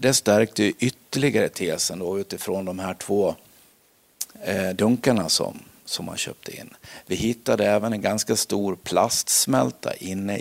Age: 50-69